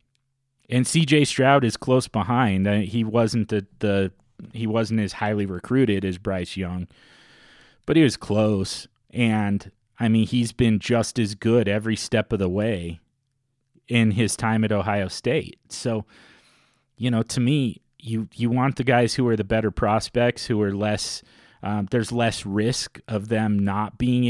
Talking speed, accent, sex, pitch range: 165 wpm, American, male, 100-120 Hz